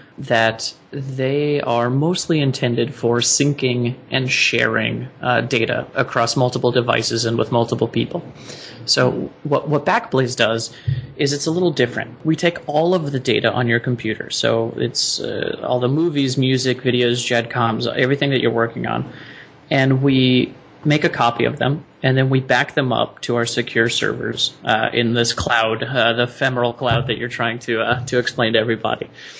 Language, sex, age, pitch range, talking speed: English, male, 30-49, 115-135 Hz, 175 wpm